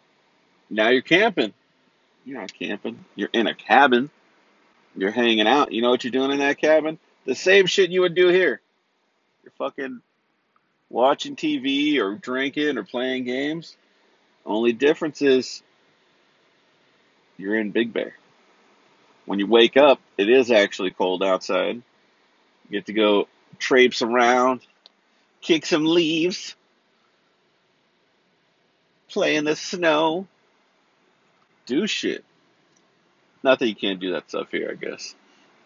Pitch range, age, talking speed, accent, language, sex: 120-165 Hz, 40-59, 135 wpm, American, English, male